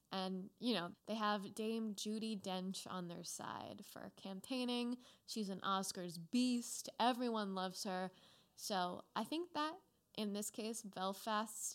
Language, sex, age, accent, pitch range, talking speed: English, female, 20-39, American, 190-235 Hz, 145 wpm